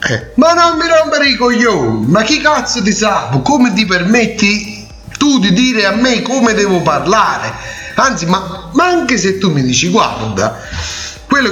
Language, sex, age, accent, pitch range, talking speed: Italian, male, 30-49, native, 120-200 Hz, 170 wpm